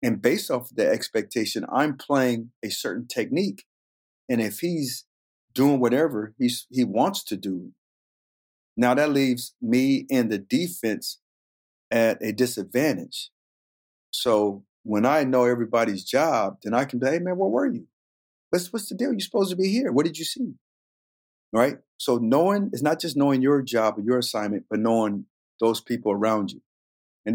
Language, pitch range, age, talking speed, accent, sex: English, 105-140 Hz, 40-59, 170 wpm, American, male